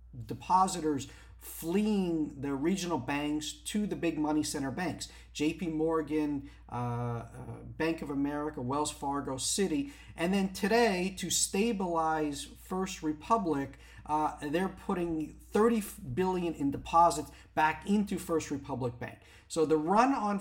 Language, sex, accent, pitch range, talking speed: English, male, American, 125-165 Hz, 125 wpm